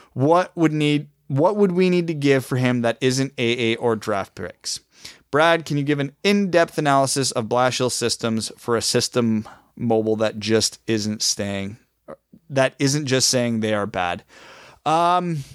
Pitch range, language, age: 105-130 Hz, English, 20-39